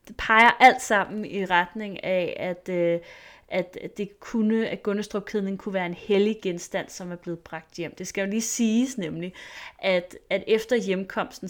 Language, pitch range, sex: Danish, 180-220 Hz, female